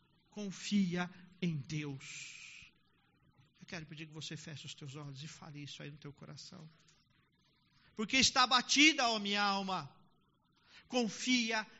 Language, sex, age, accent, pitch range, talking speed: Portuguese, male, 50-69, Brazilian, 140-195 Hz, 130 wpm